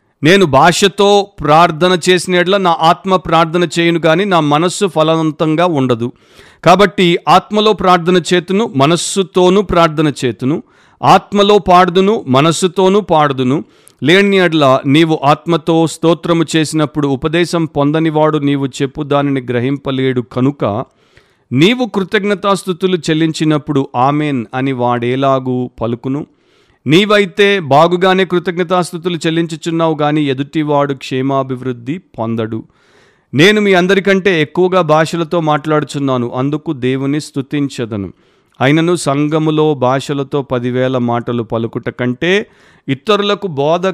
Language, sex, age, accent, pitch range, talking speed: Telugu, male, 50-69, native, 135-180 Hz, 95 wpm